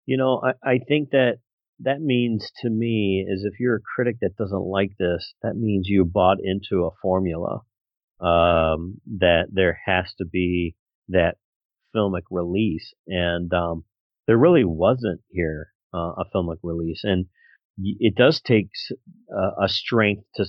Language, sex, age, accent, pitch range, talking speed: English, male, 40-59, American, 90-100 Hz, 155 wpm